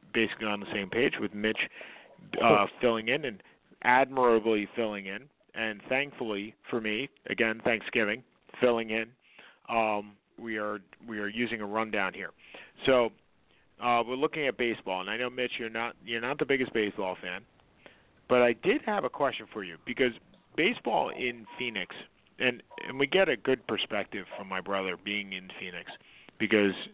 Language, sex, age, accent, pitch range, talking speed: English, male, 40-59, American, 105-120 Hz, 165 wpm